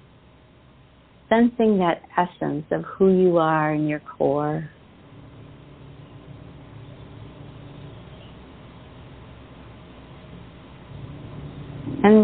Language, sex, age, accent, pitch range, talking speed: English, female, 50-69, American, 140-175 Hz, 55 wpm